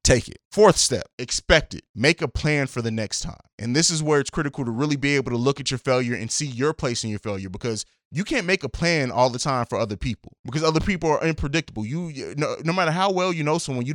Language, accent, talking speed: English, American, 270 wpm